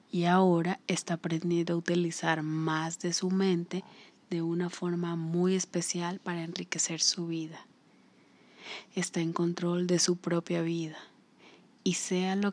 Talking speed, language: 140 wpm, Spanish